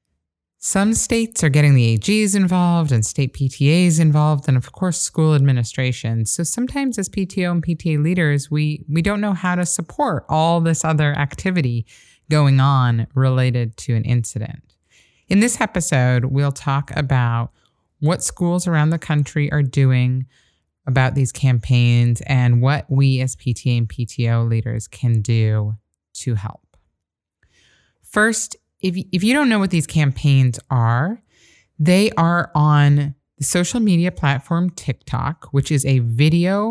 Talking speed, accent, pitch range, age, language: 145 wpm, American, 125-165 Hz, 30-49, English